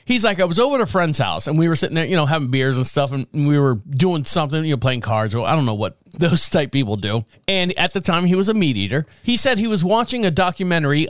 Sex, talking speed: male, 290 wpm